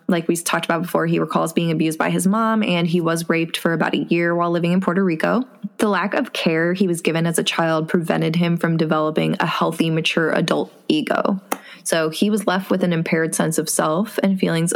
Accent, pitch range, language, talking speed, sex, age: American, 165-200 Hz, English, 230 wpm, female, 20-39